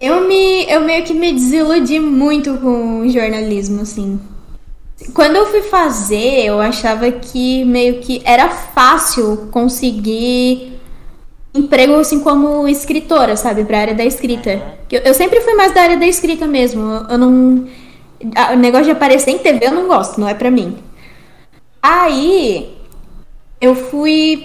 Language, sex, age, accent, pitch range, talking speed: Portuguese, female, 10-29, Brazilian, 245-320 Hz, 140 wpm